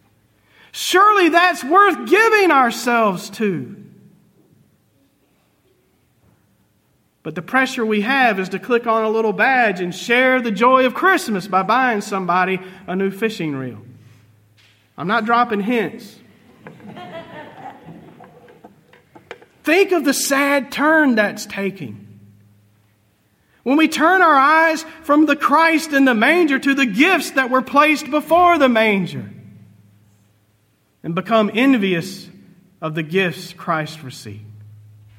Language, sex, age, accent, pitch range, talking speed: English, male, 40-59, American, 175-260 Hz, 120 wpm